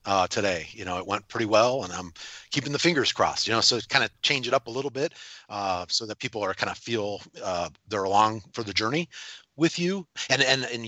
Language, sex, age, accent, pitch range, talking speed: English, male, 40-59, American, 95-130 Hz, 245 wpm